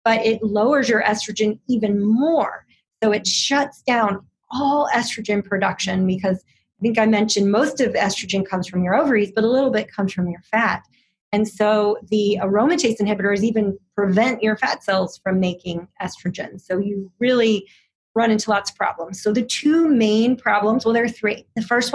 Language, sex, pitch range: English, female, 195-235 Hz